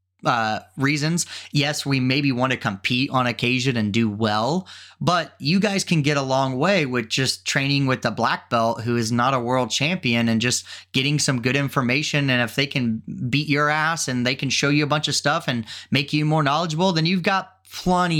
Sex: male